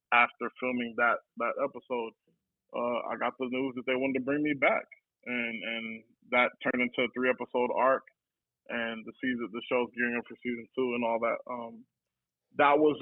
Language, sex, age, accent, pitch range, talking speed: English, male, 20-39, American, 120-140 Hz, 195 wpm